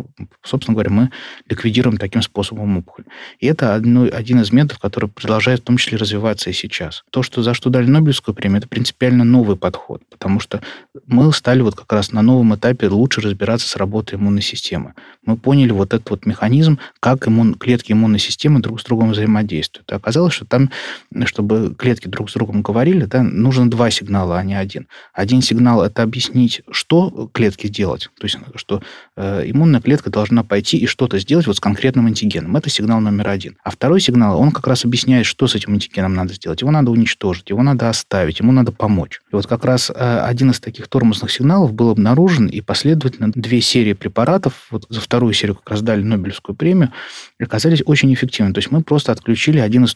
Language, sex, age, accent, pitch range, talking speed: Russian, male, 20-39, native, 105-125 Hz, 195 wpm